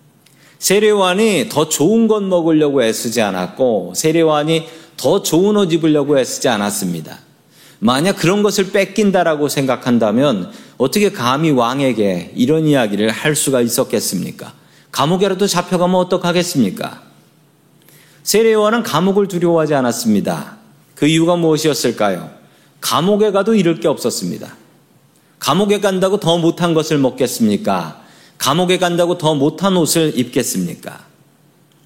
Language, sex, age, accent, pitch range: Korean, male, 40-59, native, 135-180 Hz